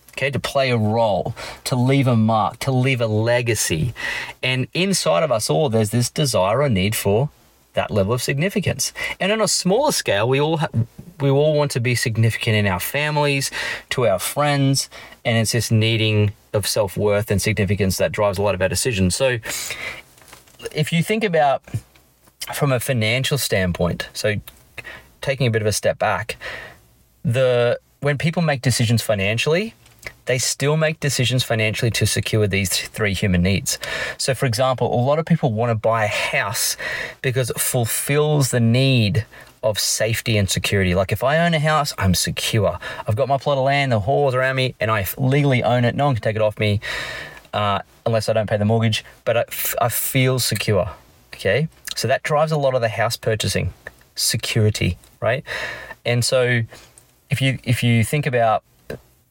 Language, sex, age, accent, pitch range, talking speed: English, male, 30-49, Australian, 110-135 Hz, 185 wpm